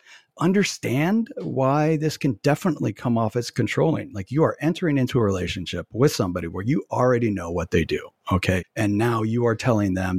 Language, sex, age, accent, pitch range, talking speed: English, male, 40-59, American, 95-130 Hz, 190 wpm